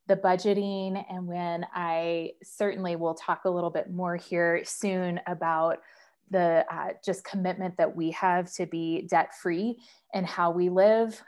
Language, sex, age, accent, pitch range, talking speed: English, female, 20-39, American, 175-205 Hz, 160 wpm